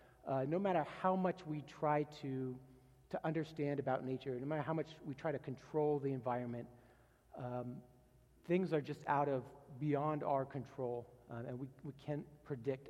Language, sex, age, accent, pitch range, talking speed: English, male, 40-59, American, 125-160 Hz, 170 wpm